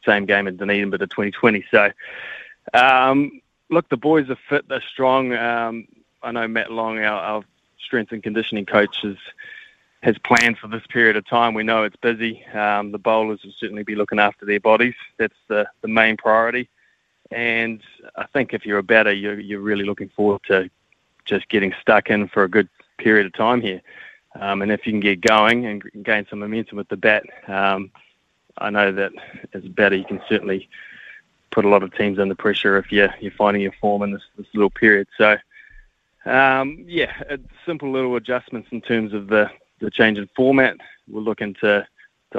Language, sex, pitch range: English, male, 100-115 Hz